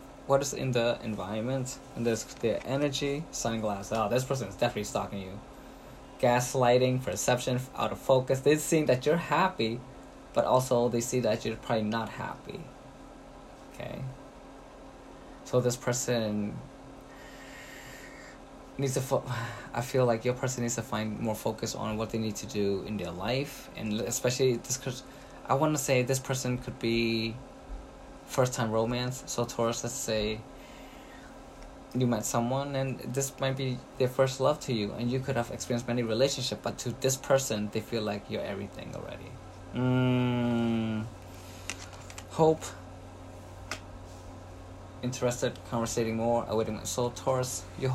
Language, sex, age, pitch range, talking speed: English, male, 20-39, 110-130 Hz, 145 wpm